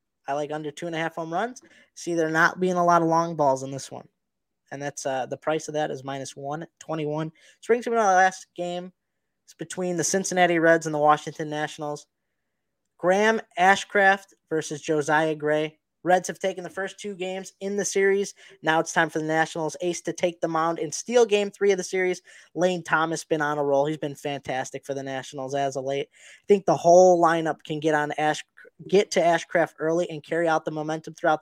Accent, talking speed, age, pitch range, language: American, 220 wpm, 20-39, 150-180 Hz, English